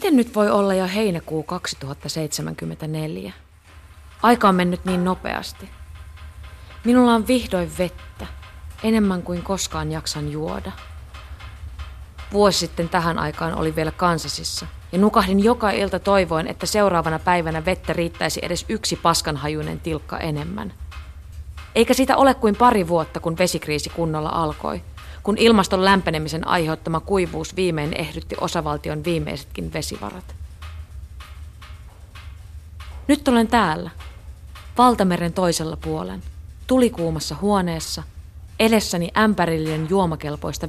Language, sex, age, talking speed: Finnish, female, 30-49, 110 wpm